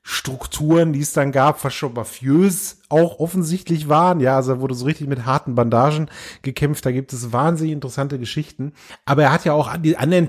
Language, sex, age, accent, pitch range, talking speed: German, male, 30-49, German, 125-155 Hz, 200 wpm